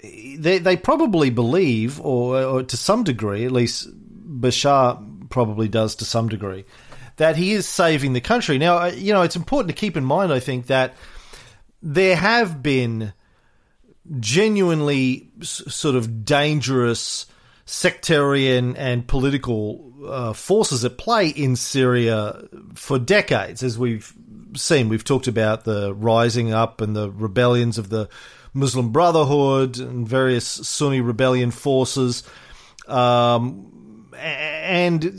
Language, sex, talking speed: English, male, 130 wpm